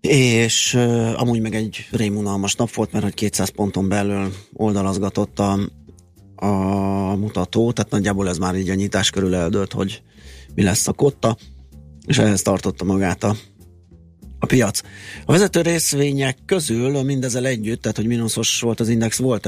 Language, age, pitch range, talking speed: Hungarian, 30-49, 95-120 Hz, 150 wpm